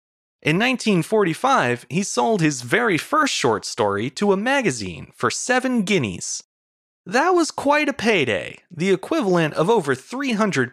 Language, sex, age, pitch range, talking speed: English, male, 30-49, 145-230 Hz, 140 wpm